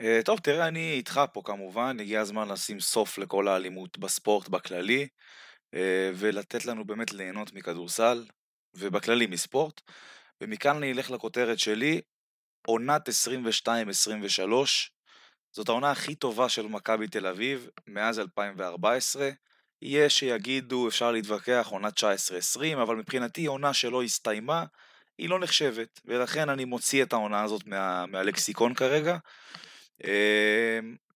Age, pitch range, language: 20-39, 110-135 Hz, Hebrew